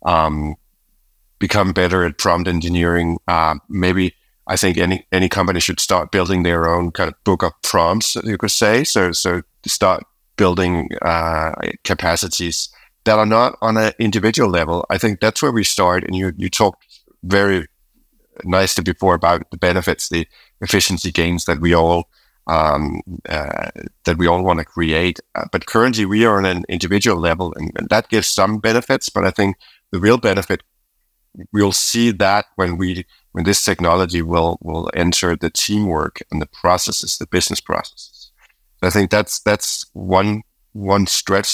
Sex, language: male, Danish